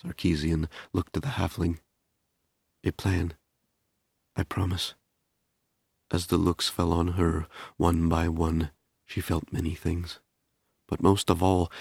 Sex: male